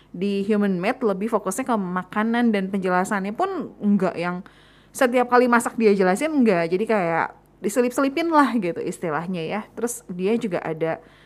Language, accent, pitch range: Indonesian, native, 185-240 Hz